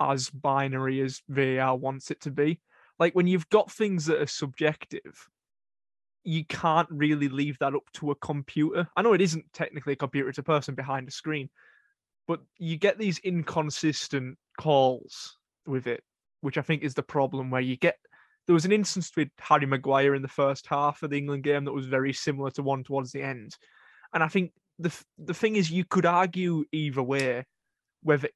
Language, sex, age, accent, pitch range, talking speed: English, male, 20-39, British, 140-165 Hz, 195 wpm